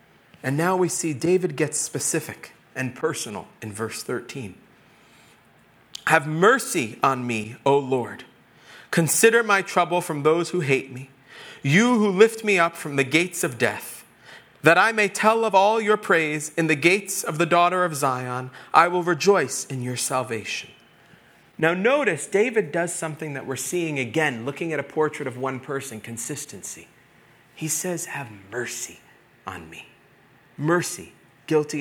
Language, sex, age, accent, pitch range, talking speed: English, male, 40-59, American, 130-170 Hz, 155 wpm